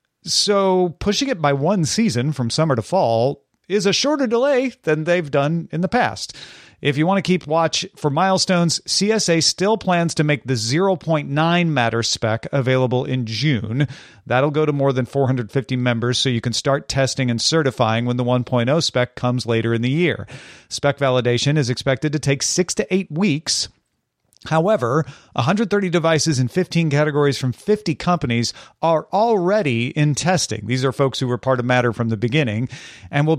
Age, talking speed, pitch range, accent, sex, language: 40-59, 180 wpm, 125-175 Hz, American, male, English